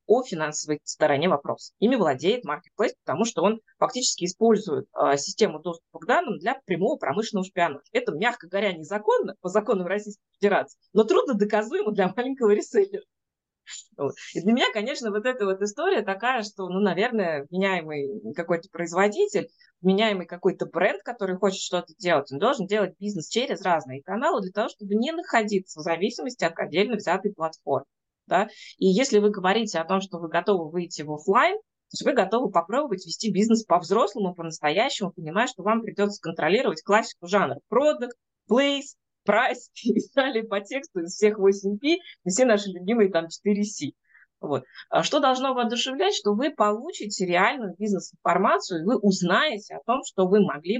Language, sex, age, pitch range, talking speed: Russian, female, 20-39, 180-230 Hz, 155 wpm